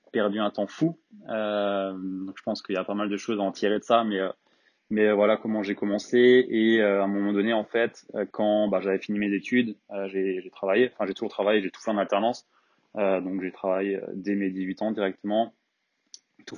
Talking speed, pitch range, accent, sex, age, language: 220 wpm, 95-110 Hz, French, male, 20-39, French